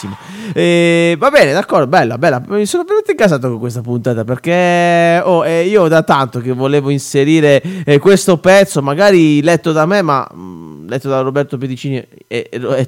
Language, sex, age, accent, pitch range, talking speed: Italian, male, 30-49, native, 140-205 Hz, 175 wpm